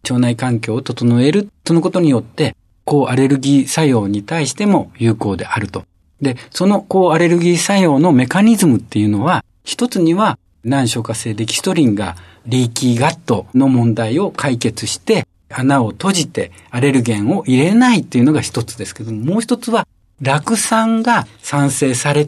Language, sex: Japanese, male